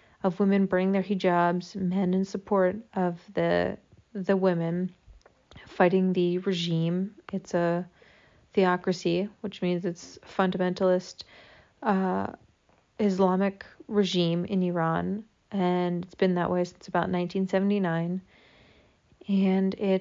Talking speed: 110 wpm